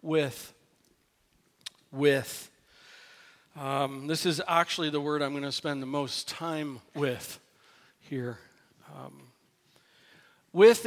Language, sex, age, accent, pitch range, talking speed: English, male, 50-69, American, 145-180 Hz, 105 wpm